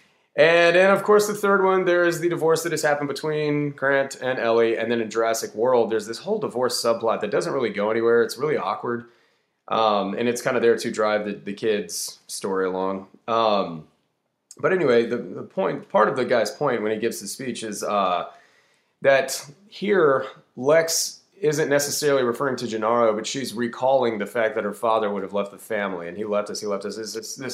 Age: 30-49